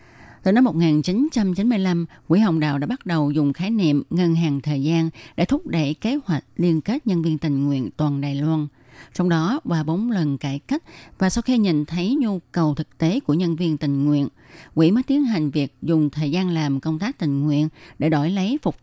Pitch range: 145-180 Hz